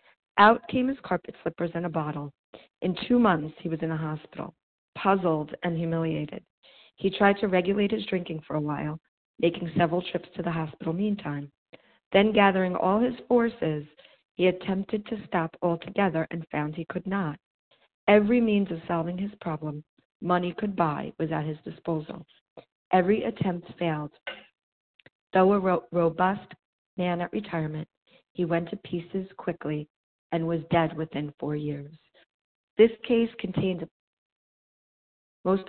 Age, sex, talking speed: 40-59, female, 150 wpm